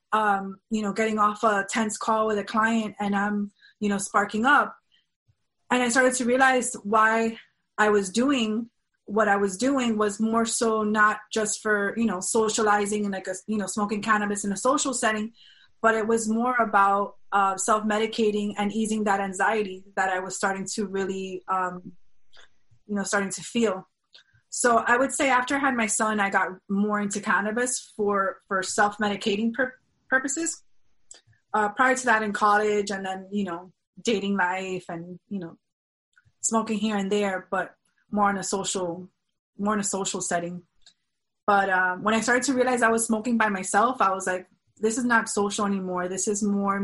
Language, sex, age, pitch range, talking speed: English, female, 20-39, 195-220 Hz, 185 wpm